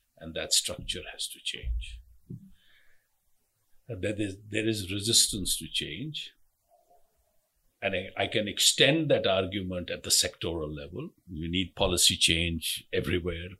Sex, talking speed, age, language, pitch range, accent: male, 125 wpm, 50-69, English, 85-110 Hz, Indian